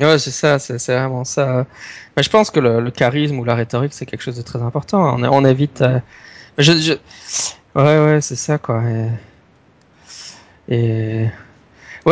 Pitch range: 110-130 Hz